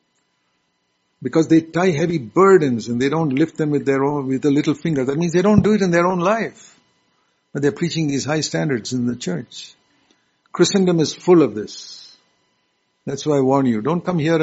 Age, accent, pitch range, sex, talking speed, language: 60-79, Indian, 125-150 Hz, male, 205 wpm, English